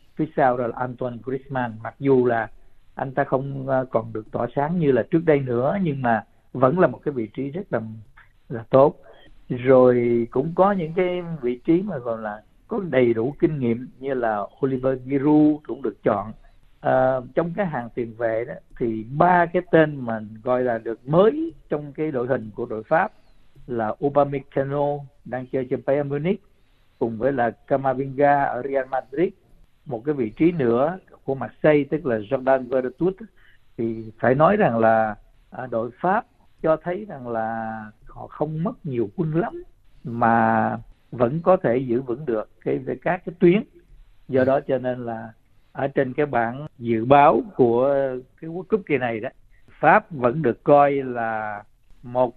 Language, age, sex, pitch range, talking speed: Vietnamese, 60-79, male, 120-155 Hz, 180 wpm